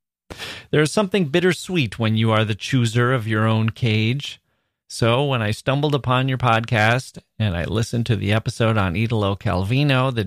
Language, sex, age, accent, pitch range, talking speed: English, male, 30-49, American, 100-125 Hz, 175 wpm